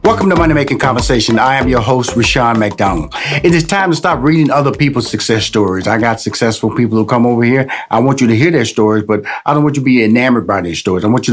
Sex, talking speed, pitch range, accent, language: male, 265 wpm, 110-135 Hz, American, English